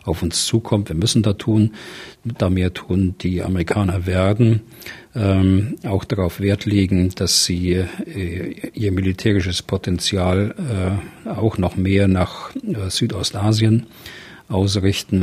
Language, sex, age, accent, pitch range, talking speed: German, male, 40-59, German, 95-110 Hz, 125 wpm